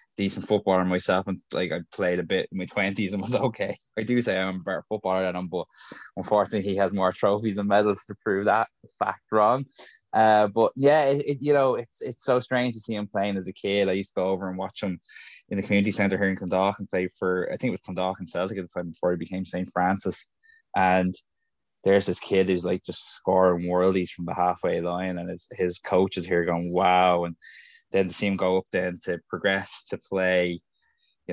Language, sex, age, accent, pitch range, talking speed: English, male, 10-29, Irish, 90-100 Hz, 220 wpm